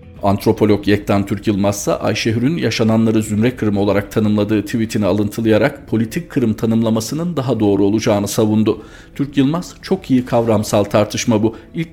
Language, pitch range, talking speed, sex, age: Turkish, 105-135 Hz, 140 wpm, male, 50-69